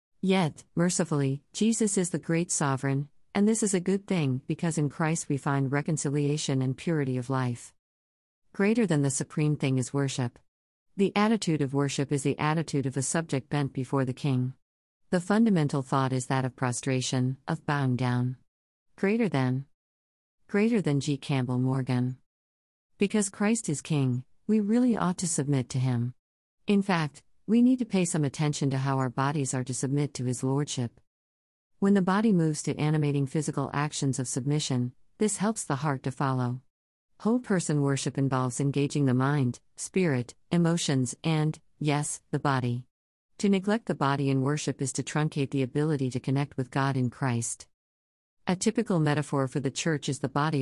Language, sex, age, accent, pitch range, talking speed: English, female, 50-69, American, 130-165 Hz, 170 wpm